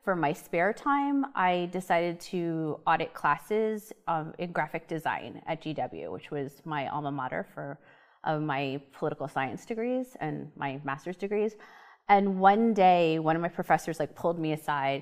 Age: 30-49